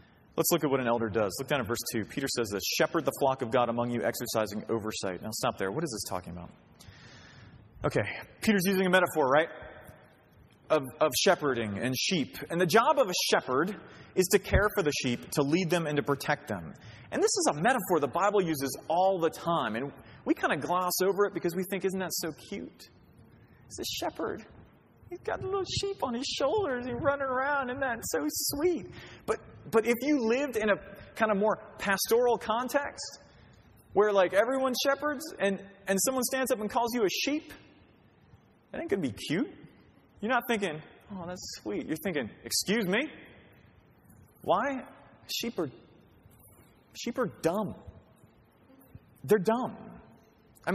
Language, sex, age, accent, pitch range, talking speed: English, male, 30-49, American, 150-240 Hz, 185 wpm